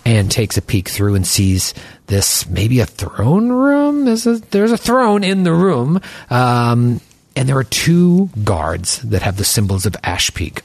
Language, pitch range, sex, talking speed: English, 85-130 Hz, male, 180 wpm